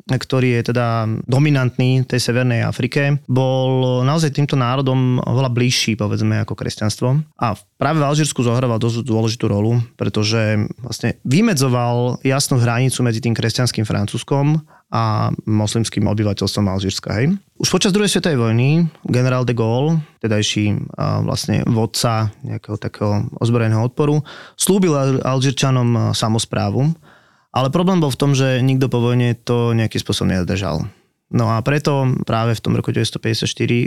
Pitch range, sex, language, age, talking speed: 115-135 Hz, male, Slovak, 20-39, 135 wpm